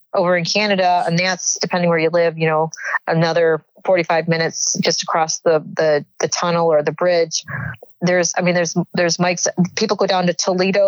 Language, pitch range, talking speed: English, 165-190 Hz, 195 wpm